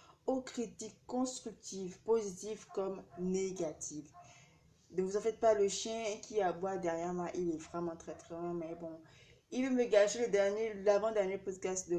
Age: 20-39